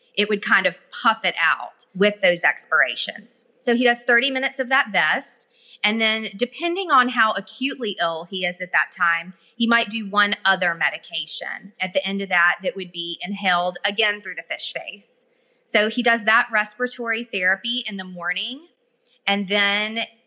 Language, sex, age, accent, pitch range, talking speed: English, female, 30-49, American, 185-240 Hz, 180 wpm